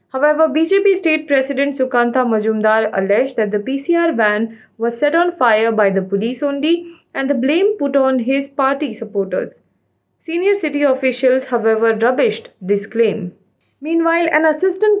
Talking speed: 150 wpm